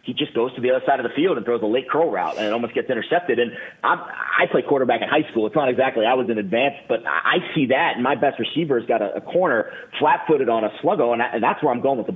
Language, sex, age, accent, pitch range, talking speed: English, male, 30-49, American, 110-145 Hz, 305 wpm